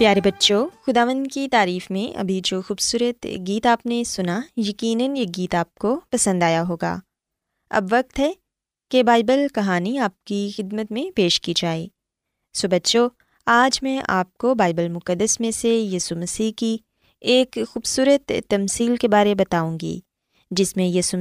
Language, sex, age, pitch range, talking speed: Urdu, female, 20-39, 185-260 Hz, 160 wpm